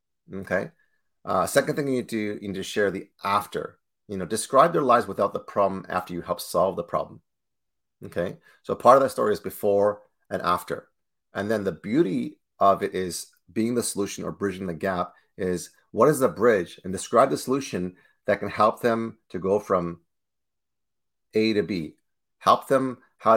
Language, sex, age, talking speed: English, male, 30-49, 190 wpm